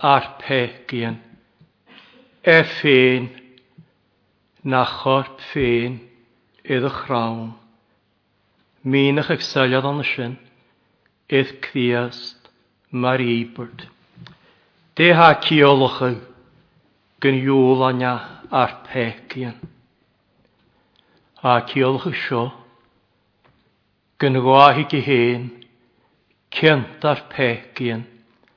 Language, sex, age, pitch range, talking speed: English, male, 60-79, 120-135 Hz, 50 wpm